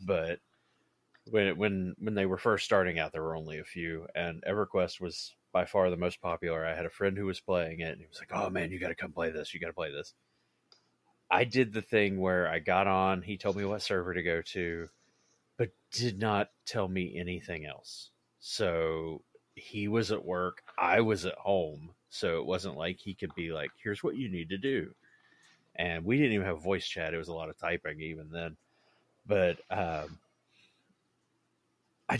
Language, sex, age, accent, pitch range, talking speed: English, male, 30-49, American, 85-105 Hz, 205 wpm